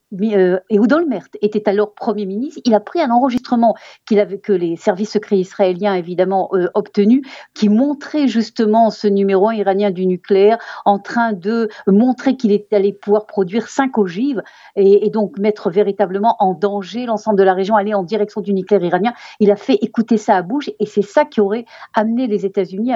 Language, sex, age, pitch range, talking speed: Russian, female, 50-69, 195-230 Hz, 190 wpm